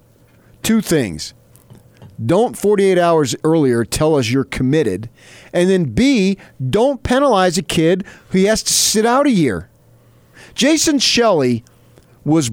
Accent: American